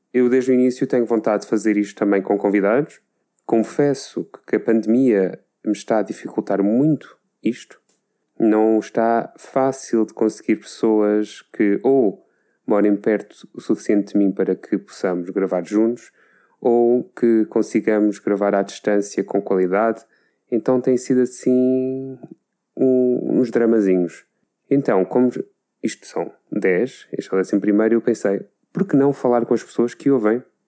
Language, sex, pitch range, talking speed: Portuguese, male, 100-125 Hz, 150 wpm